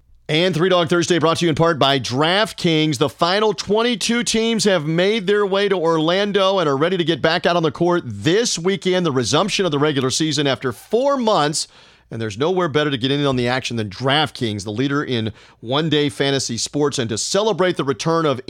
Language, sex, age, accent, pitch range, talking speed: English, male, 40-59, American, 140-190 Hz, 215 wpm